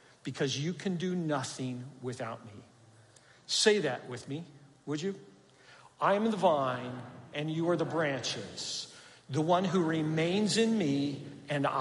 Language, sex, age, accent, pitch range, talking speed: English, male, 50-69, American, 125-165 Hz, 145 wpm